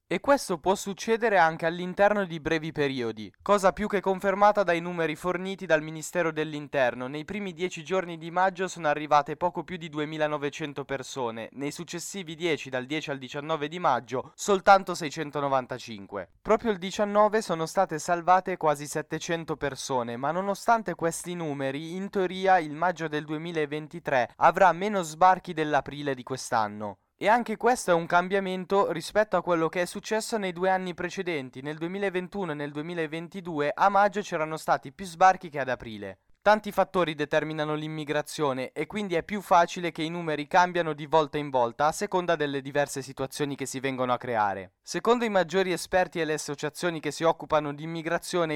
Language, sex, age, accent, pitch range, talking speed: Italian, male, 10-29, native, 145-185 Hz, 170 wpm